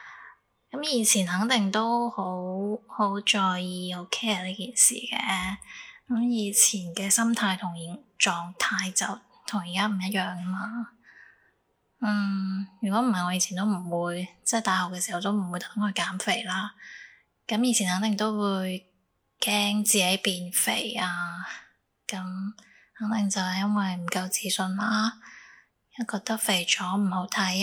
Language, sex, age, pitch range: Chinese, female, 10-29, 185-220 Hz